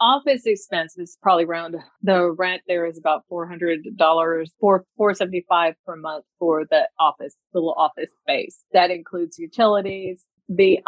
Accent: American